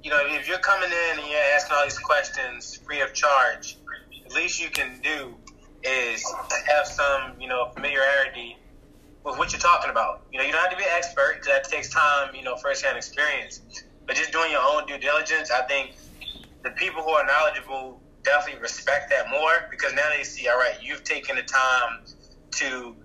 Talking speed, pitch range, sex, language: 200 wpm, 135-165 Hz, male, English